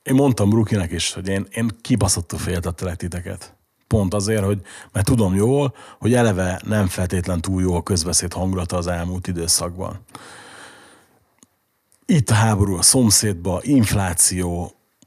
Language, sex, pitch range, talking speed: Hungarian, male, 95-115 Hz, 135 wpm